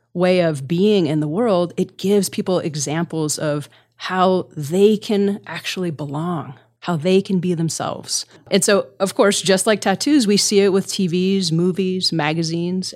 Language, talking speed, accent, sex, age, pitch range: English, 160 wpm, American, female, 30-49, 155-190 Hz